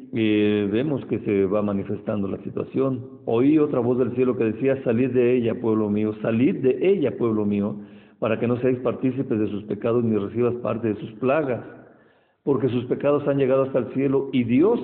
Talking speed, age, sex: 200 wpm, 50-69, male